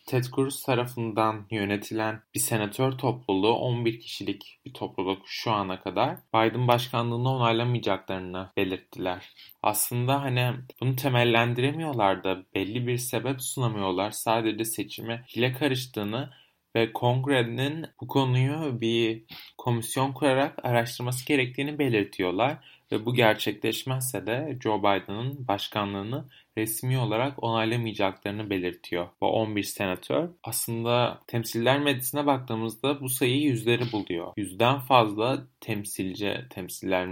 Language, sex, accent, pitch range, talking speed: Turkish, male, native, 110-130 Hz, 110 wpm